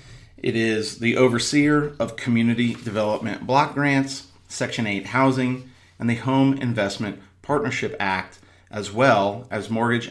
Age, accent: 30-49, American